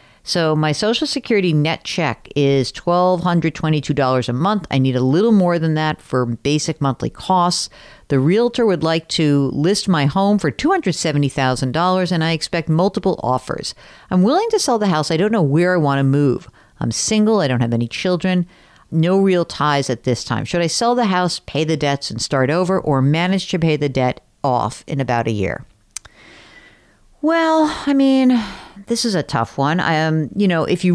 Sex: female